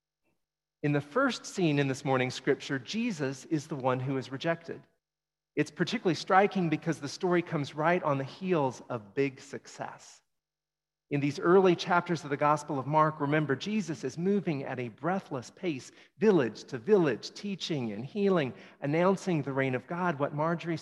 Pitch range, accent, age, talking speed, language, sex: 140-180 Hz, American, 40-59, 170 wpm, English, male